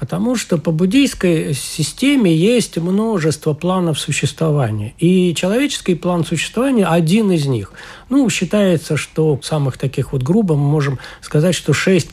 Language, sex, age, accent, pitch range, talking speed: Russian, male, 60-79, native, 145-195 Hz, 145 wpm